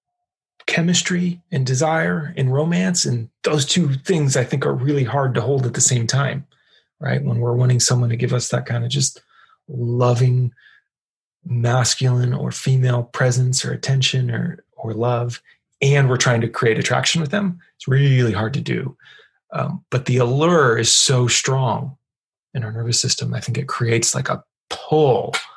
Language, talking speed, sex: English, 170 wpm, male